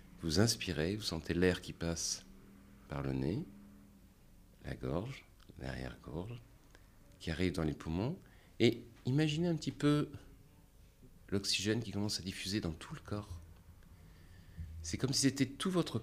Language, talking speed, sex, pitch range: French, 140 wpm, male, 85-110 Hz